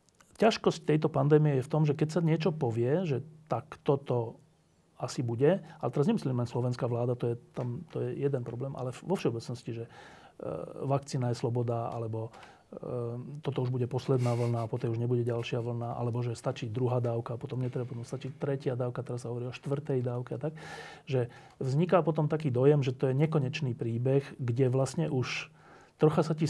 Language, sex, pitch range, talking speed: Slovak, male, 125-155 Hz, 185 wpm